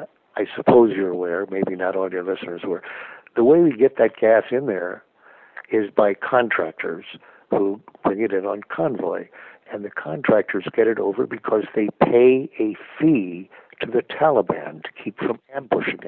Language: English